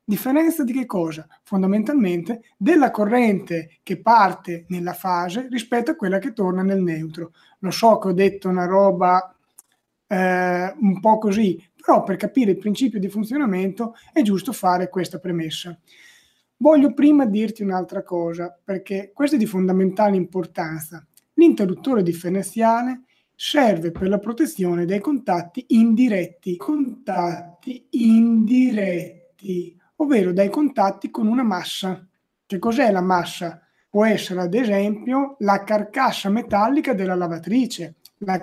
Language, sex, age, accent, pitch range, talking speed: Italian, male, 30-49, native, 180-235 Hz, 130 wpm